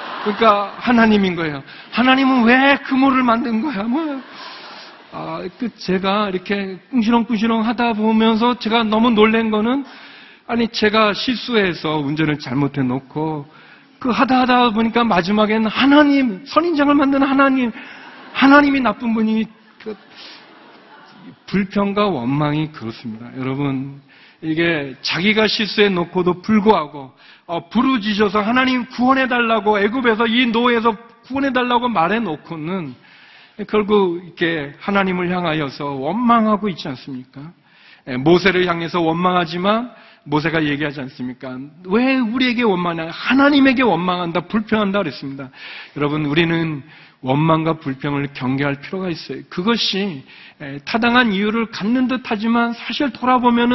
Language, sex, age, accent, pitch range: Korean, male, 40-59, native, 165-240 Hz